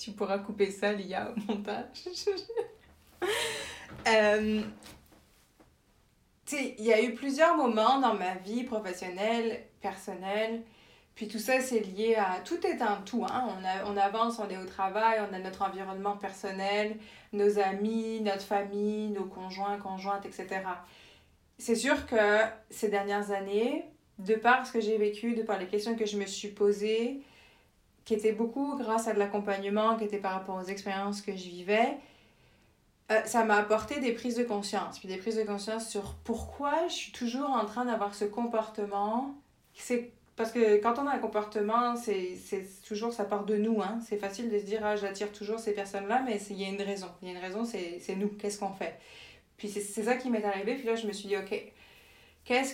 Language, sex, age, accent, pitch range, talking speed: French, female, 30-49, French, 200-230 Hz, 195 wpm